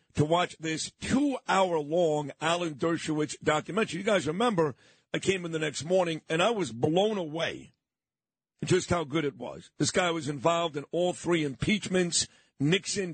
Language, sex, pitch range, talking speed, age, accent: English, male, 155-190 Hz, 160 wpm, 50-69, American